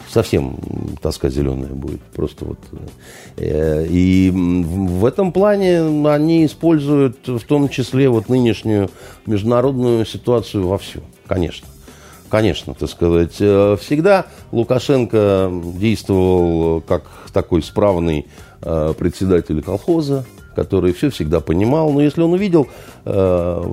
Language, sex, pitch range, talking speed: Russian, male, 85-125 Hz, 105 wpm